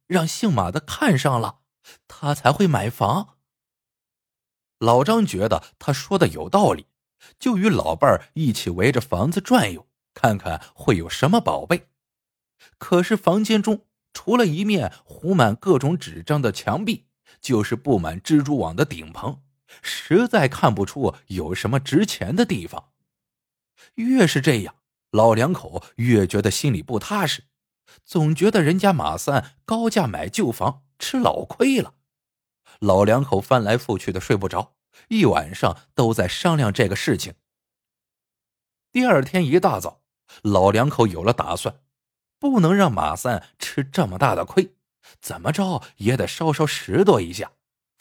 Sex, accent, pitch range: male, native, 110-185 Hz